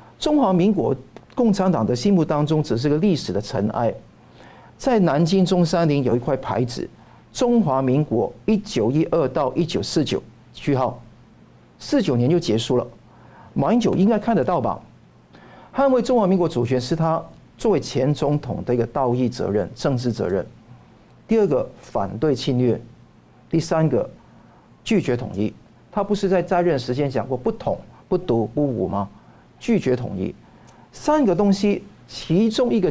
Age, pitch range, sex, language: 50-69, 125-195 Hz, male, Chinese